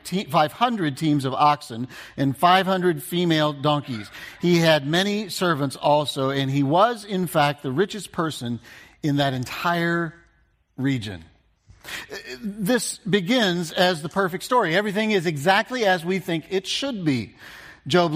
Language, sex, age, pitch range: English, male, 50-69, 145-205 Hz